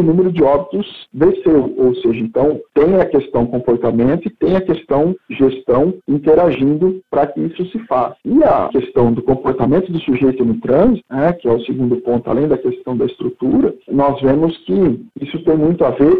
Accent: Brazilian